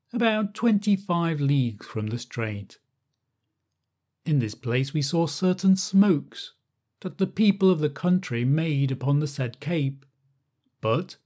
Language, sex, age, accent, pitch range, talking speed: English, male, 40-59, British, 130-190 Hz, 135 wpm